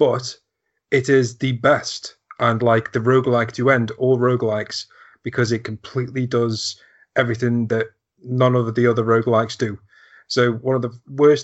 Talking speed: 155 wpm